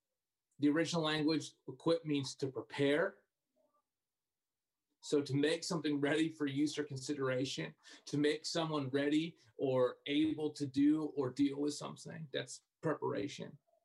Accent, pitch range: American, 155-210 Hz